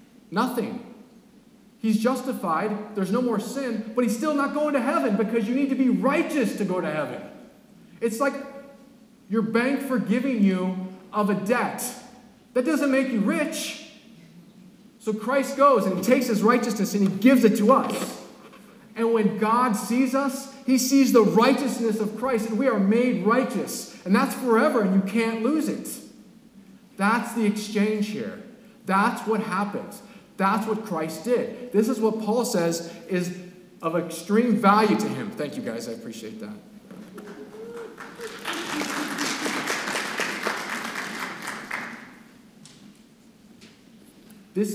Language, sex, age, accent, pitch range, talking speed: English, male, 40-59, American, 200-240 Hz, 140 wpm